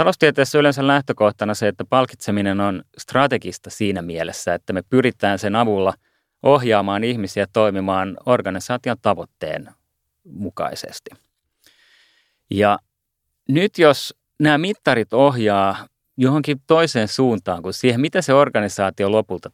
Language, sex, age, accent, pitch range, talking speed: Finnish, male, 30-49, native, 100-135 Hz, 110 wpm